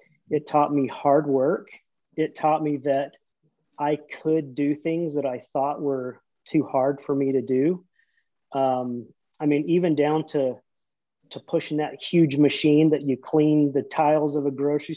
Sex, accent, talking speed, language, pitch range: male, American, 170 wpm, English, 135-160 Hz